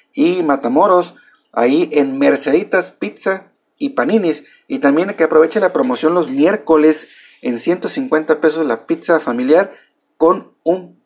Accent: Mexican